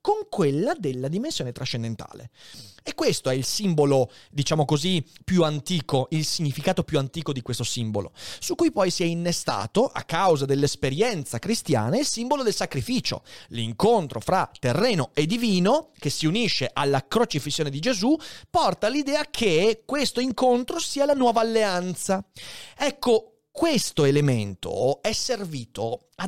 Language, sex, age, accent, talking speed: Italian, male, 30-49, native, 140 wpm